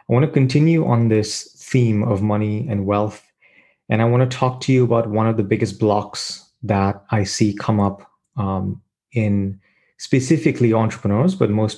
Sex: male